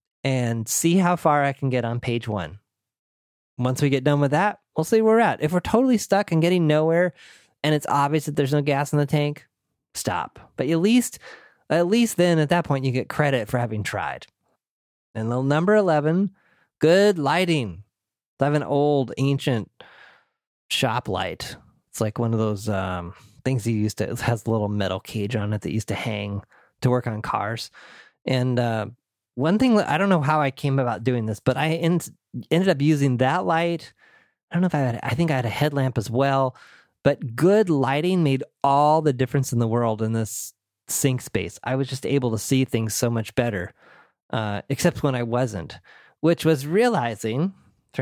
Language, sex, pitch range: English, male, 115-150 Hz